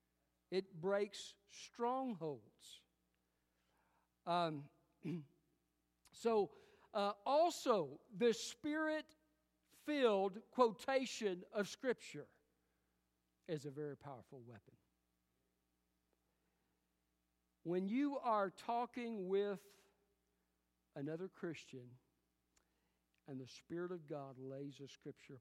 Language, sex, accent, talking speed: English, male, American, 75 wpm